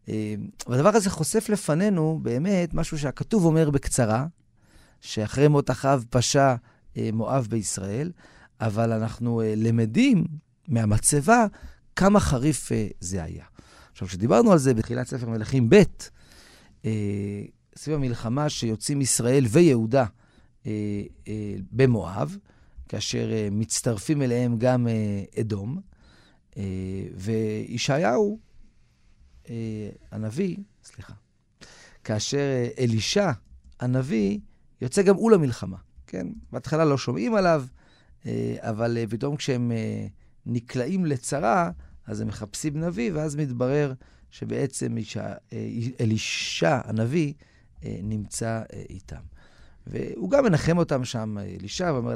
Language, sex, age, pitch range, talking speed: Hebrew, male, 40-59, 110-145 Hz, 100 wpm